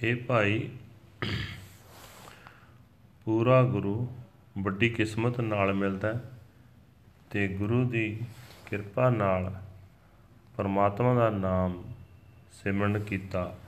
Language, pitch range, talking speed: Punjabi, 95-110 Hz, 80 wpm